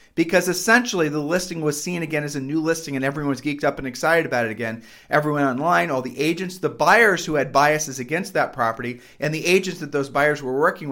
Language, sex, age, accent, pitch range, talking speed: English, male, 40-59, American, 135-170 Hz, 225 wpm